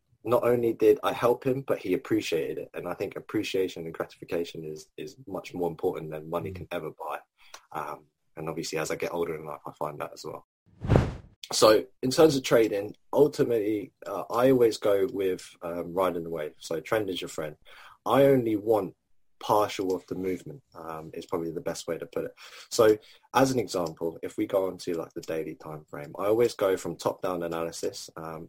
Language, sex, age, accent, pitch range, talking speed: English, male, 20-39, British, 85-130 Hz, 200 wpm